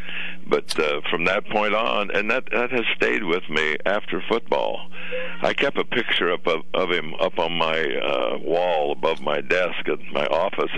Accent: American